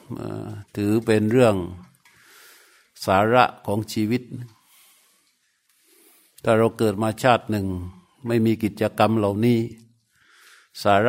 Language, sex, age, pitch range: Thai, male, 60-79, 105-115 Hz